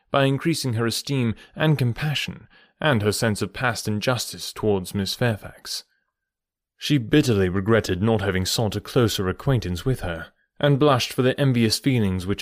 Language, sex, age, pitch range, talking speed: English, male, 30-49, 100-145 Hz, 160 wpm